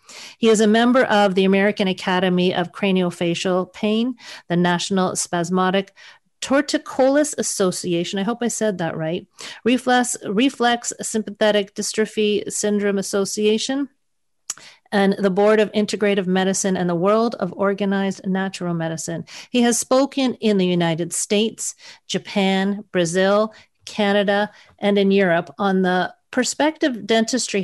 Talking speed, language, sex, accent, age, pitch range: 125 wpm, English, female, American, 40-59, 185-220 Hz